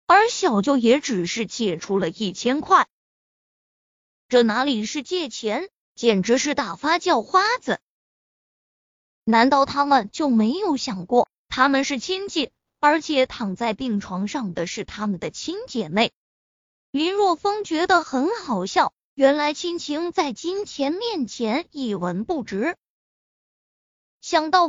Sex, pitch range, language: female, 230-355 Hz, Chinese